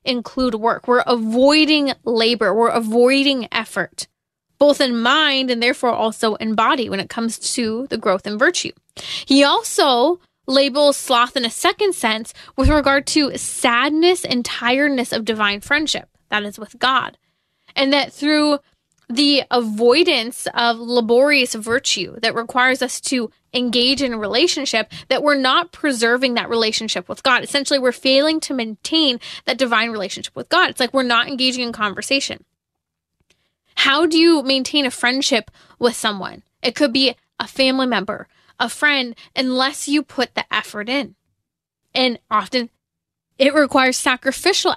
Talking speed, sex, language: 150 wpm, female, English